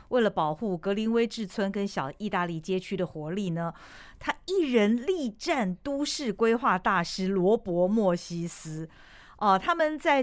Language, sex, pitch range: Chinese, female, 175-230 Hz